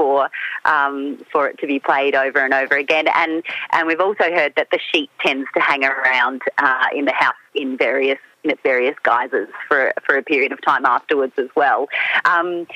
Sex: female